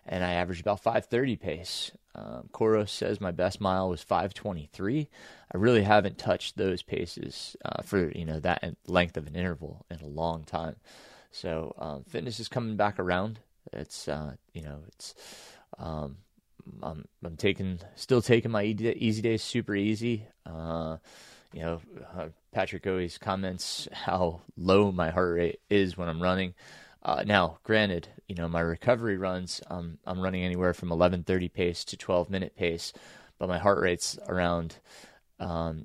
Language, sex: English, male